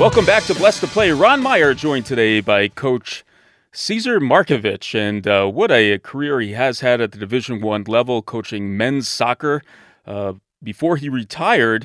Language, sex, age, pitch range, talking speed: English, male, 30-49, 105-145 Hz, 175 wpm